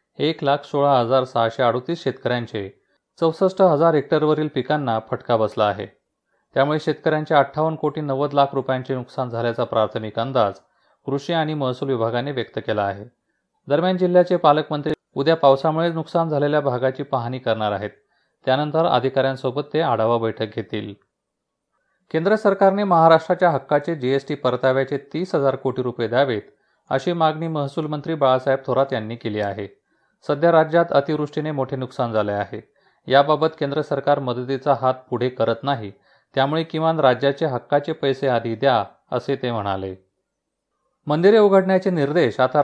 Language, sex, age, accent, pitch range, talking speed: Marathi, male, 30-49, native, 125-155 Hz, 110 wpm